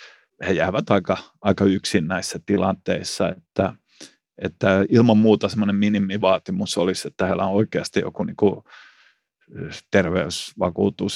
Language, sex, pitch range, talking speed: Finnish, male, 100-110 Hz, 110 wpm